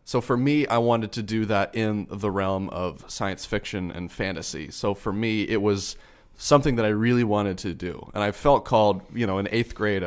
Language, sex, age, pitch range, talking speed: English, male, 30-49, 95-115 Hz, 220 wpm